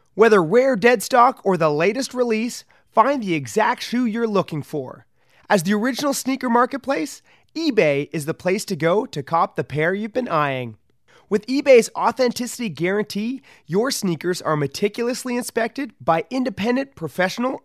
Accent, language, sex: American, English, male